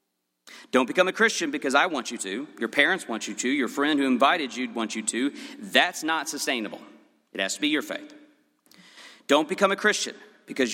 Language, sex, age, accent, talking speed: English, male, 40-59, American, 200 wpm